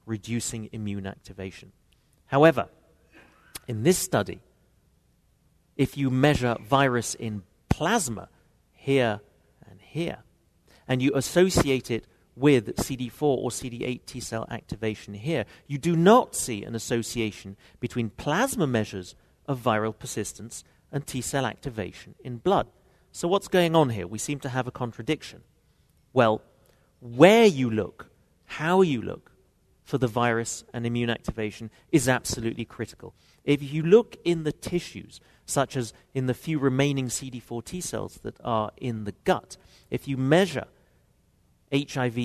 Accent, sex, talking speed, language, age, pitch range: British, male, 140 wpm, English, 40-59, 110-140 Hz